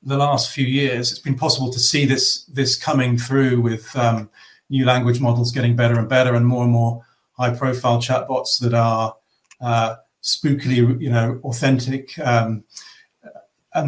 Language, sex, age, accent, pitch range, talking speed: English, male, 40-59, British, 120-140 Hz, 165 wpm